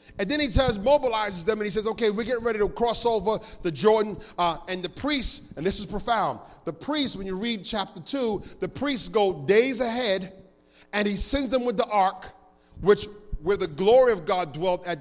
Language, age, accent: English, 40-59, American